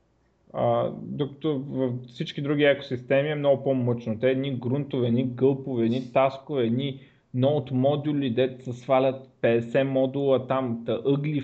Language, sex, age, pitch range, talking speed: Bulgarian, male, 20-39, 125-155 Hz, 140 wpm